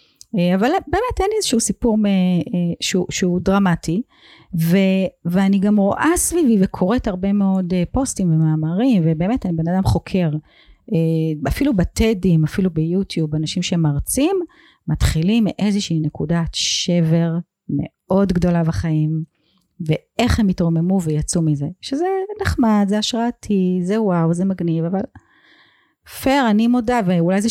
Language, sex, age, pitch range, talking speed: Hebrew, female, 40-59, 165-230 Hz, 120 wpm